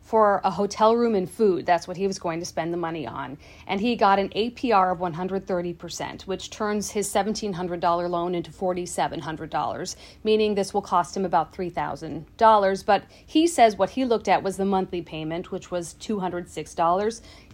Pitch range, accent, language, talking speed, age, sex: 180-220 Hz, American, English, 175 wpm, 40-59, female